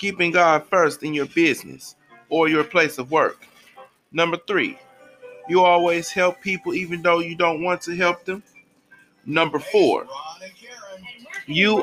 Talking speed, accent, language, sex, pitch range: 140 wpm, American, English, male, 165-205 Hz